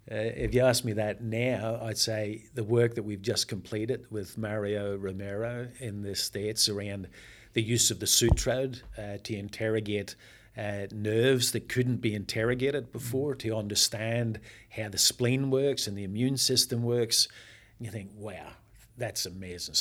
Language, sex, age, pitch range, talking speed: English, male, 50-69, 105-120 Hz, 165 wpm